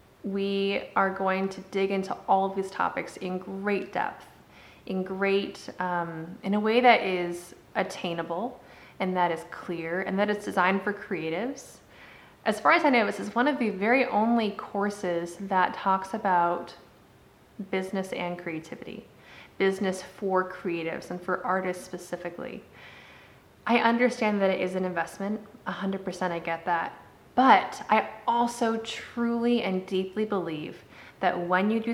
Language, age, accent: English, 20-39, American